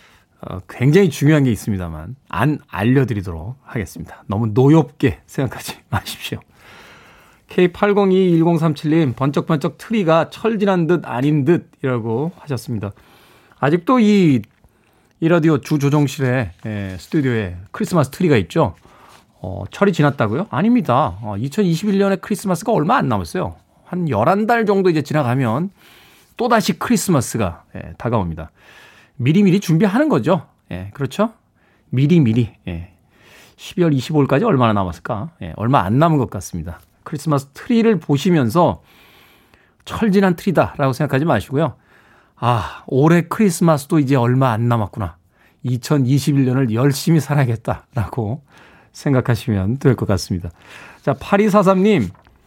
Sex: male